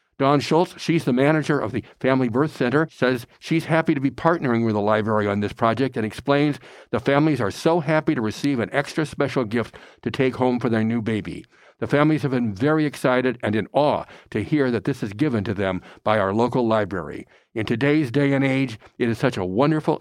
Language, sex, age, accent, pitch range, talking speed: English, male, 60-79, American, 110-145 Hz, 220 wpm